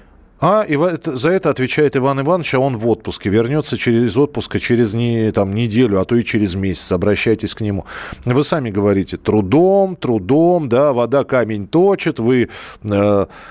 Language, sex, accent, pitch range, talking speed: Russian, male, native, 105-145 Hz, 150 wpm